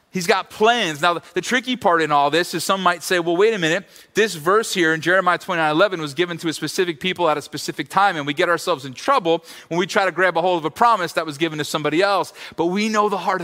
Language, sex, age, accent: English, male, 30-49, American